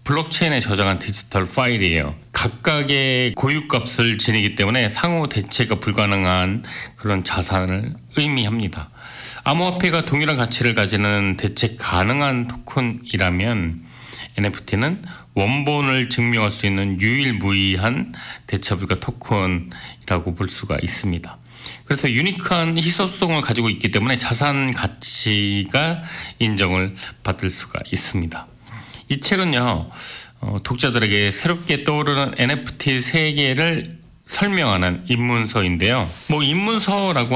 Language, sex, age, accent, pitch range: Korean, male, 40-59, native, 100-140 Hz